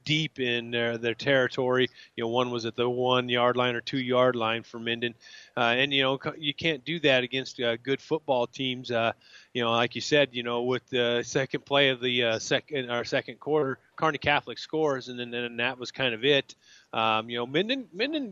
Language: English